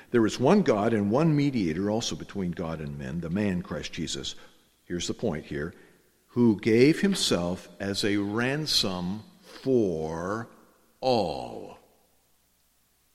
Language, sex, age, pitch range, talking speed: English, male, 50-69, 85-115 Hz, 130 wpm